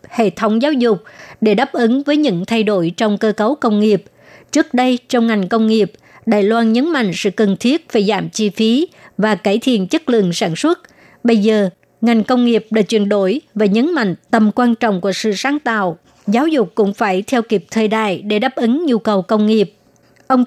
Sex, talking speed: male, 215 wpm